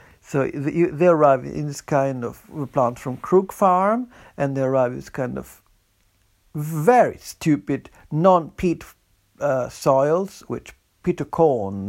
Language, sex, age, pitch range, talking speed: Finnish, male, 60-79, 130-185 Hz, 135 wpm